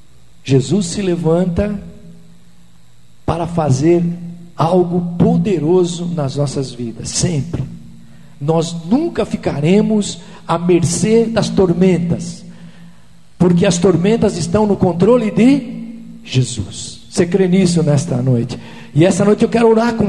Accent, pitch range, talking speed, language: Brazilian, 165-235 Hz, 115 wpm, Portuguese